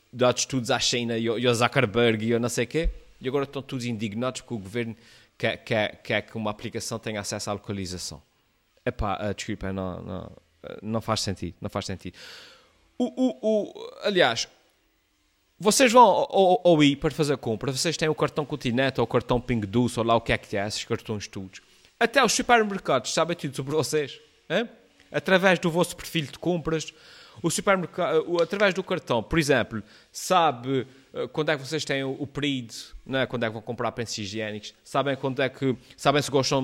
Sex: male